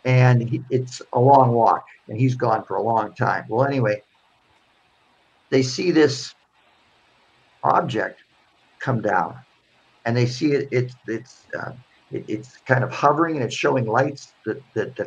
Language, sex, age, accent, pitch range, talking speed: English, male, 50-69, American, 115-135 Hz, 150 wpm